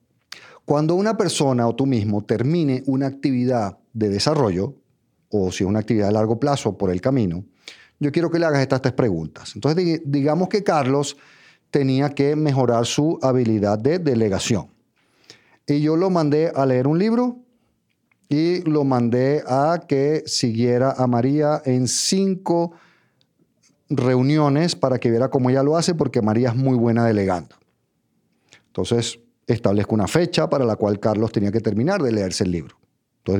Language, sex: Spanish, male